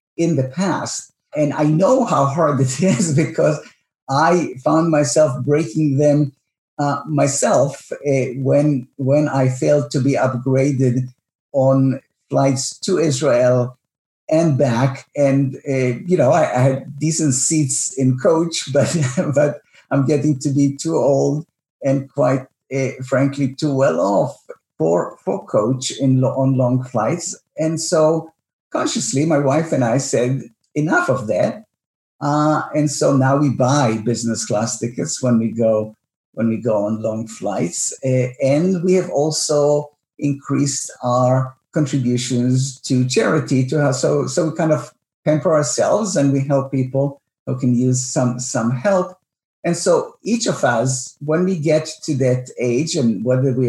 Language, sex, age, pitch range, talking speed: English, male, 50-69, 130-150 Hz, 155 wpm